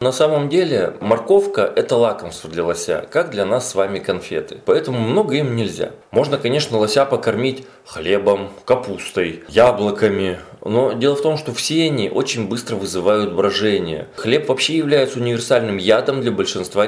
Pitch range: 100-150 Hz